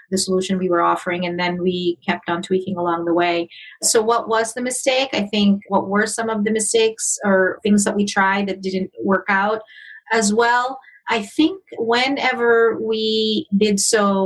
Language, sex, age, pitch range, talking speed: English, female, 30-49, 185-215 Hz, 185 wpm